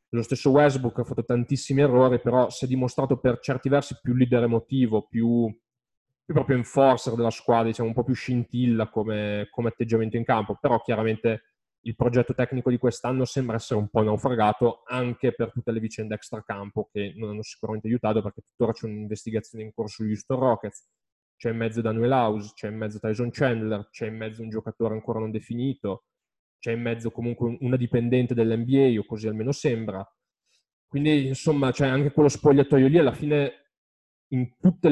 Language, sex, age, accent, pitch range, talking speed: Italian, male, 20-39, native, 110-130 Hz, 185 wpm